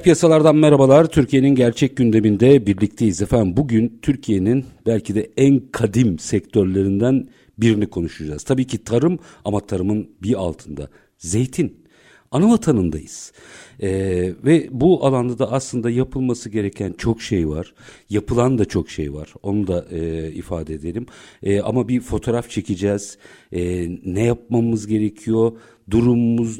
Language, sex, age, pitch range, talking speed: Turkish, male, 50-69, 95-130 Hz, 125 wpm